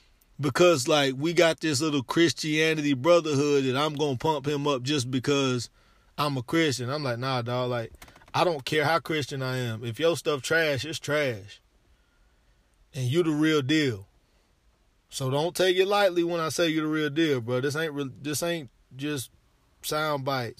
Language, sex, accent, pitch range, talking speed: English, male, American, 125-165 Hz, 185 wpm